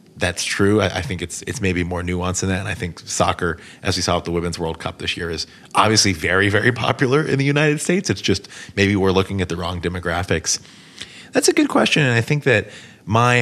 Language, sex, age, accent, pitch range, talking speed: English, male, 30-49, American, 90-110 Hz, 235 wpm